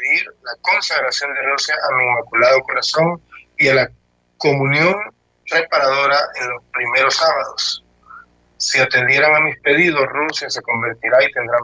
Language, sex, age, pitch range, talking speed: Spanish, male, 40-59, 115-150 Hz, 140 wpm